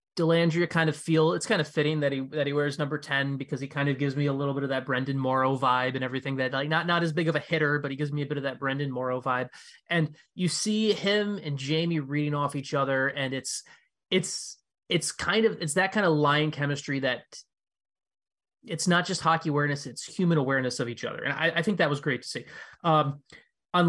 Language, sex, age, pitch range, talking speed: English, male, 20-39, 135-165 Hz, 240 wpm